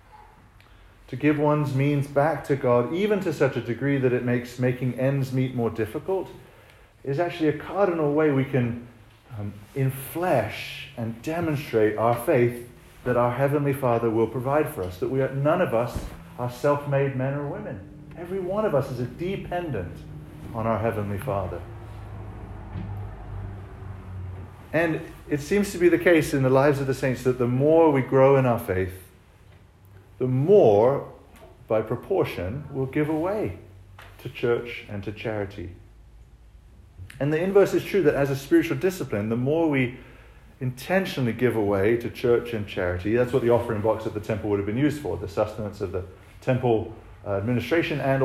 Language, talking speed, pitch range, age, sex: English, 170 wpm, 105-145 Hz, 40-59, male